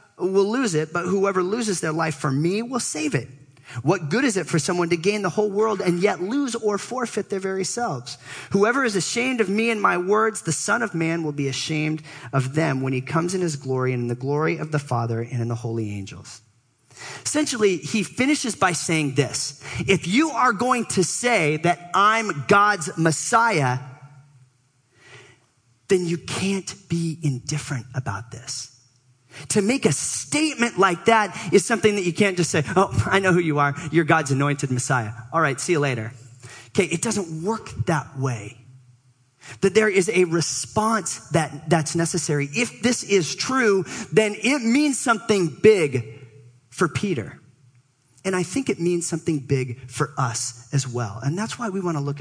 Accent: American